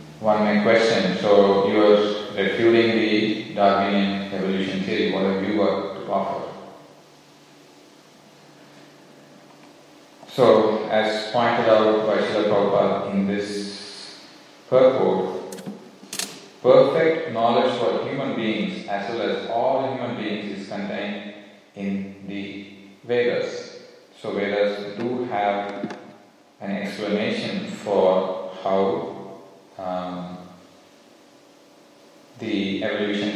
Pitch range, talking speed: 95-110 Hz, 95 wpm